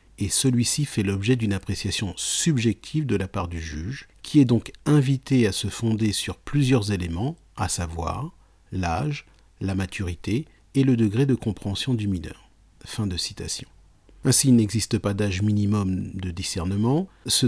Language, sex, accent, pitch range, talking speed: French, male, French, 90-120 Hz, 160 wpm